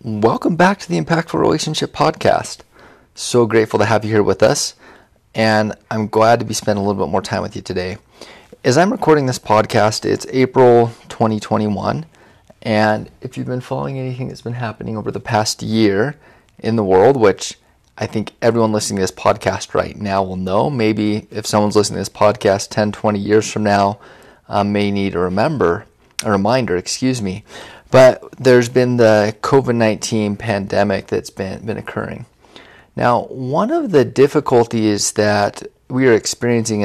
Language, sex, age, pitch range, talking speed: English, male, 30-49, 105-120 Hz, 170 wpm